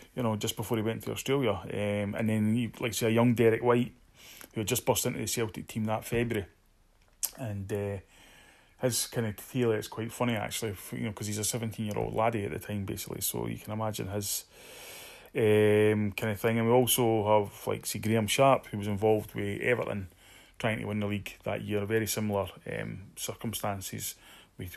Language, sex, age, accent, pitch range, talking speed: English, male, 20-39, British, 100-115 Hz, 205 wpm